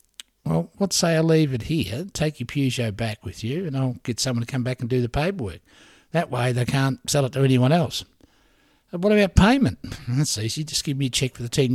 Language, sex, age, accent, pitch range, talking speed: English, male, 60-79, Australian, 120-160 Hz, 240 wpm